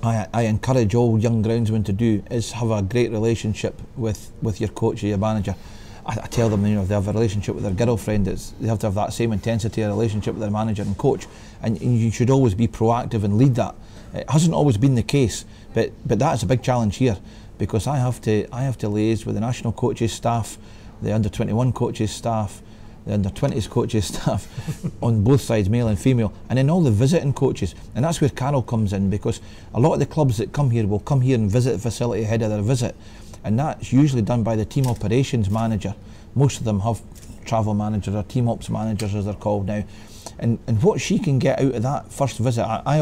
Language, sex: English, male